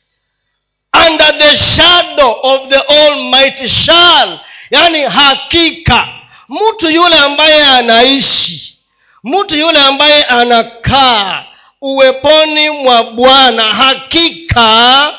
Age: 40-59